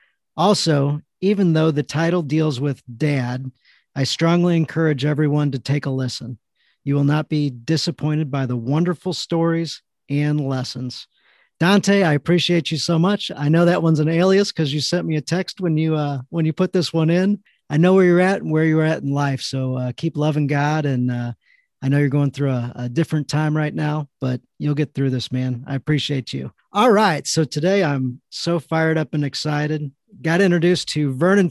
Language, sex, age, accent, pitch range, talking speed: English, male, 40-59, American, 145-175 Hz, 200 wpm